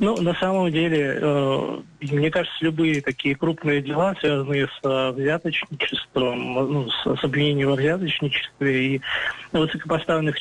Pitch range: 135-155 Hz